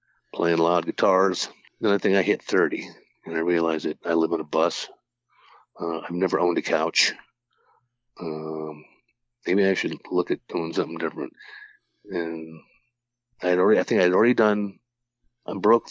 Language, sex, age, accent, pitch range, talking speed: English, male, 50-69, American, 80-120 Hz, 160 wpm